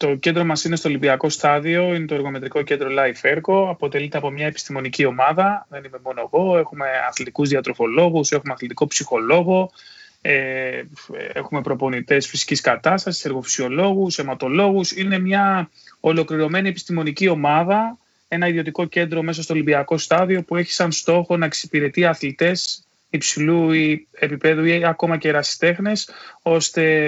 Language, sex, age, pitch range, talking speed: Greek, male, 20-39, 145-175 Hz, 135 wpm